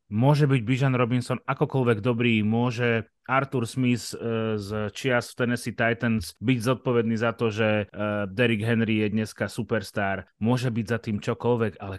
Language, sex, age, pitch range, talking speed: Slovak, male, 30-49, 105-120 Hz, 150 wpm